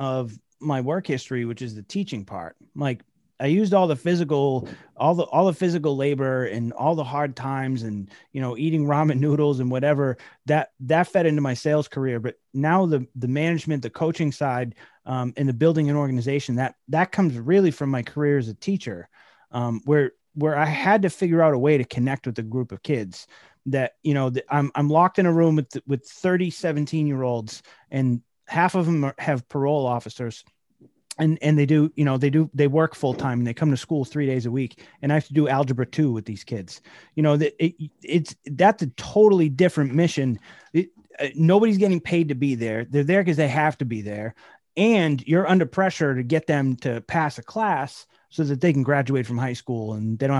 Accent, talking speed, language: American, 220 wpm, English